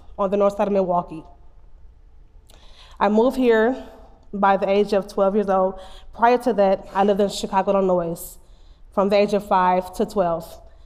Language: English